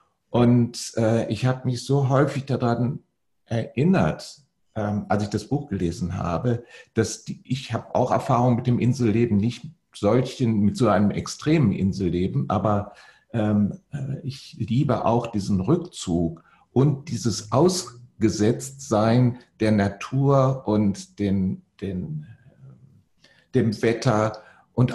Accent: German